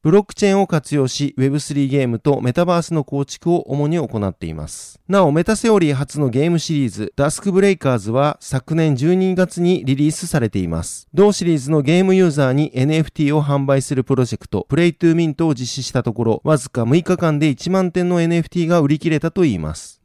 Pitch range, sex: 130-170 Hz, male